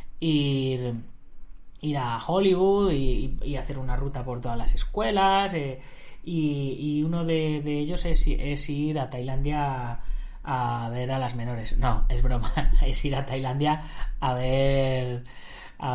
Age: 20-39